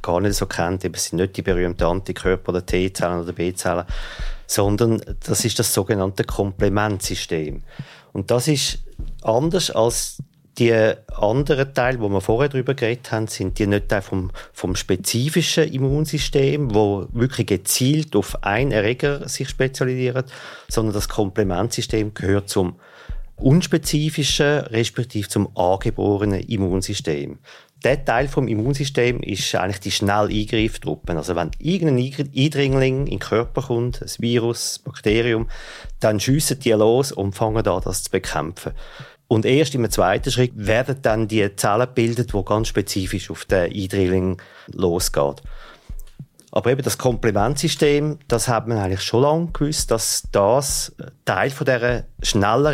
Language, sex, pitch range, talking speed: German, male, 100-135 Hz, 140 wpm